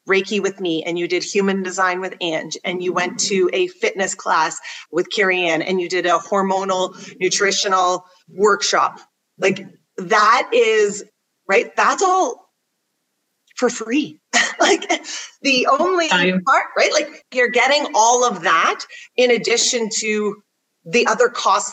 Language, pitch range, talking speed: English, 185-245 Hz, 145 wpm